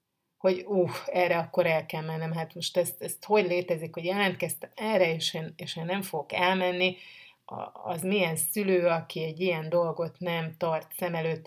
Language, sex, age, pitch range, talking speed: Hungarian, female, 30-49, 170-200 Hz, 185 wpm